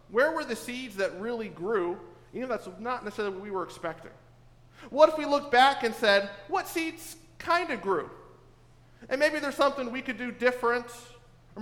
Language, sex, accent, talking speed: English, male, American, 190 wpm